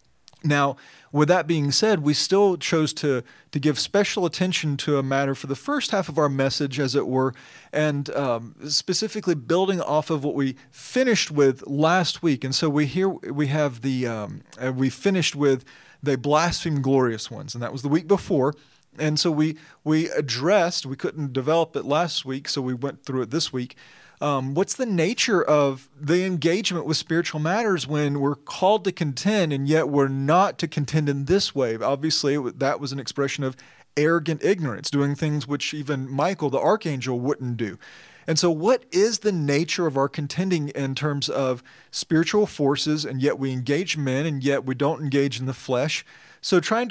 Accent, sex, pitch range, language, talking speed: American, male, 135-165 Hz, English, 190 wpm